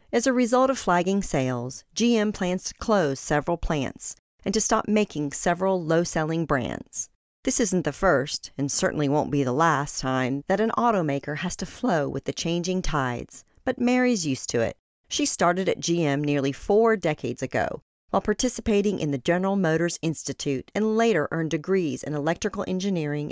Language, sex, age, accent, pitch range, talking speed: English, female, 40-59, American, 150-205 Hz, 175 wpm